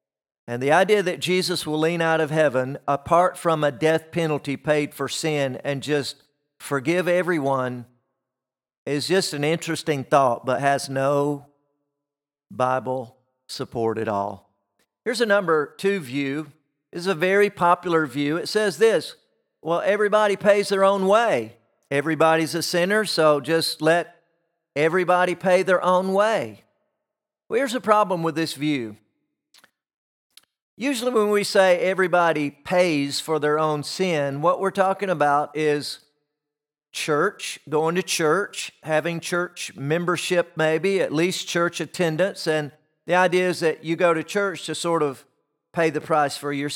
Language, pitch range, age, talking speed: English, 145-180 Hz, 50-69, 150 wpm